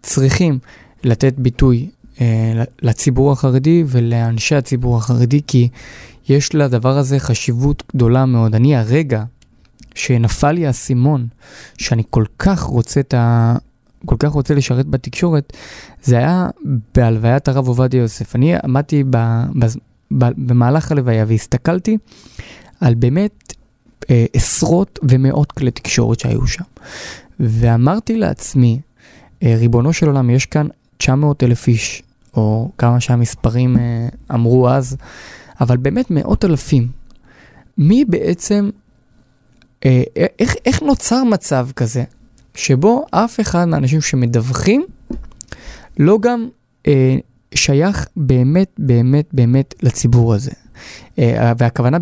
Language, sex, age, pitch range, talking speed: Hebrew, male, 20-39, 120-145 Hz, 110 wpm